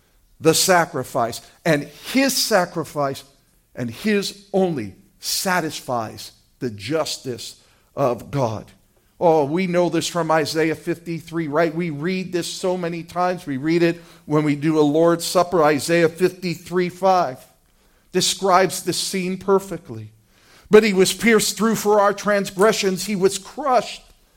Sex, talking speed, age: male, 135 wpm, 50-69